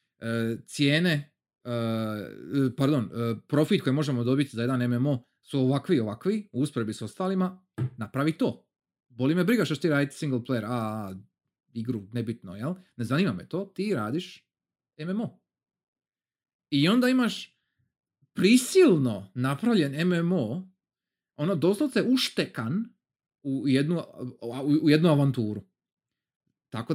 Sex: male